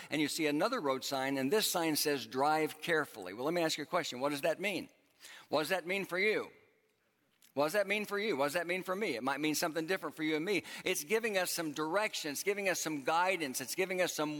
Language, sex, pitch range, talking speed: English, male, 140-175 Hz, 265 wpm